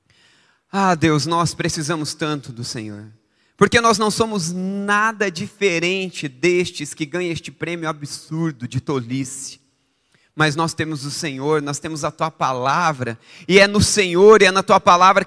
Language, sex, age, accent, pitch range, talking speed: Portuguese, male, 30-49, Brazilian, 160-210 Hz, 155 wpm